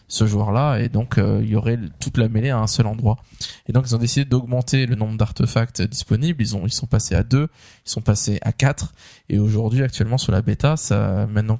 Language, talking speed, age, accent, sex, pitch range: French, 235 wpm, 20-39, French, male, 110-125 Hz